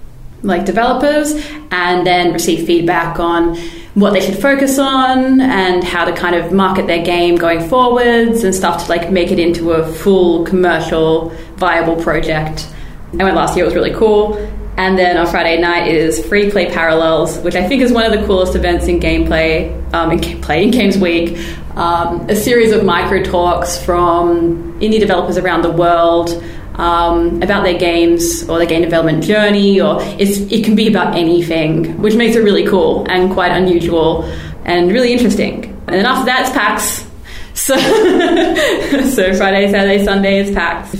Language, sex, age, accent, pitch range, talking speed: English, female, 20-39, Australian, 170-215 Hz, 175 wpm